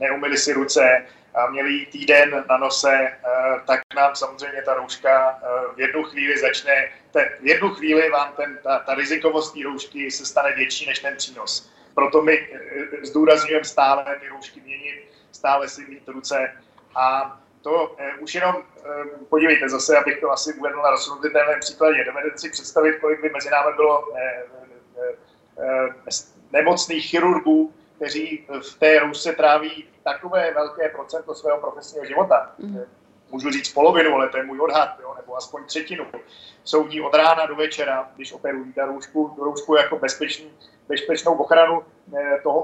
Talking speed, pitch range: 150 wpm, 135-155 Hz